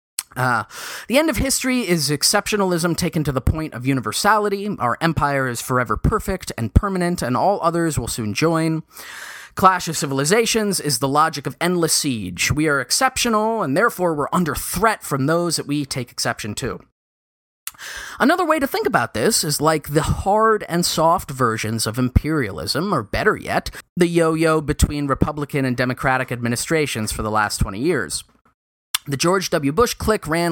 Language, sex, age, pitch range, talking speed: English, male, 30-49, 125-175 Hz, 170 wpm